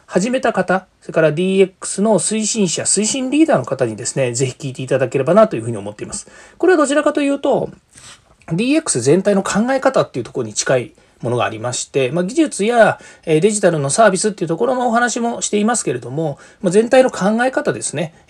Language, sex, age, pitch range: Japanese, male, 40-59, 135-215 Hz